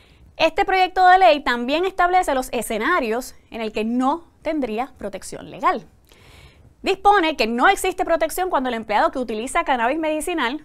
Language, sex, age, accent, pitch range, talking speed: English, female, 20-39, American, 235-325 Hz, 150 wpm